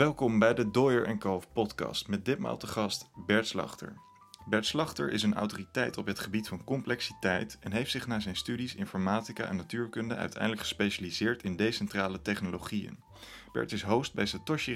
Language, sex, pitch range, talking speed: Dutch, male, 100-120 Hz, 170 wpm